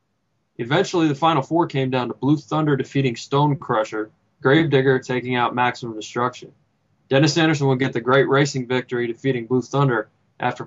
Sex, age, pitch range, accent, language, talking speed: male, 20-39, 120-140 Hz, American, English, 165 wpm